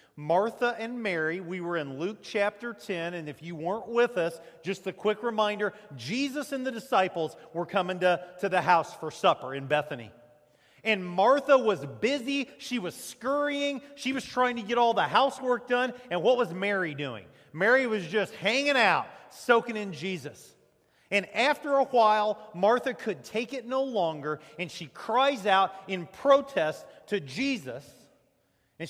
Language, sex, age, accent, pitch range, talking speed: English, male, 40-59, American, 155-245 Hz, 170 wpm